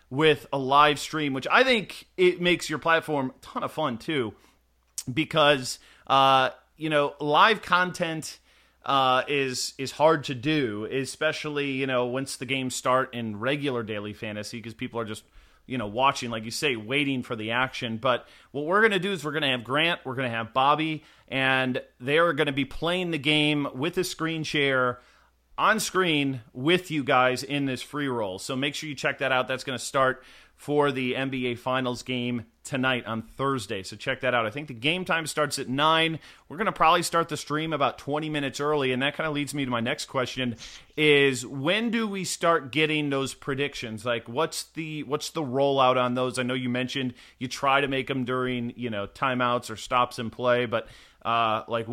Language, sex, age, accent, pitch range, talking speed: English, male, 30-49, American, 125-150 Hz, 210 wpm